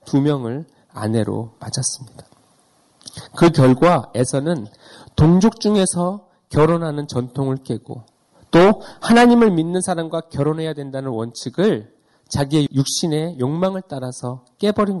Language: Korean